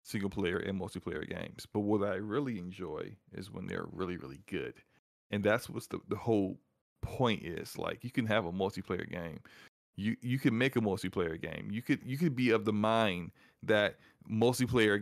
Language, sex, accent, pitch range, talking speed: English, male, American, 105-125 Hz, 190 wpm